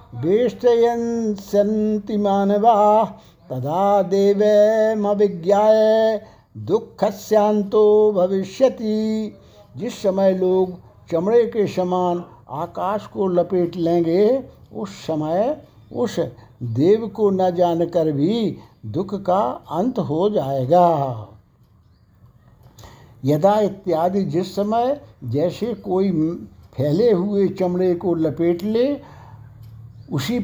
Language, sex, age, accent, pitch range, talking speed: Hindi, male, 60-79, native, 155-210 Hz, 85 wpm